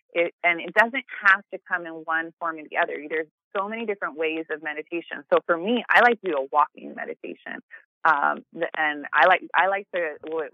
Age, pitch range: 20-39, 160-215 Hz